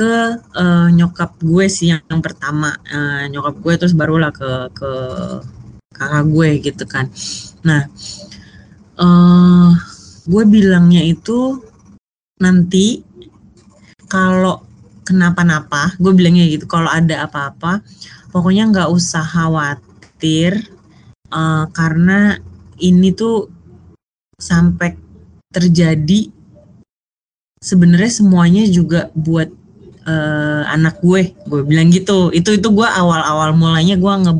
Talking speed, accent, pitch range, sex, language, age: 105 wpm, Indonesian, 150-185 Hz, female, English, 30-49